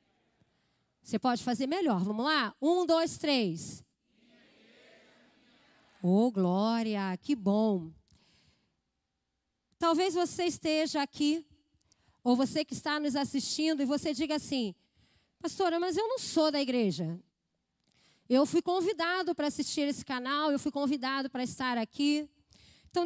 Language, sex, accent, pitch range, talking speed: Portuguese, female, Brazilian, 230-315 Hz, 125 wpm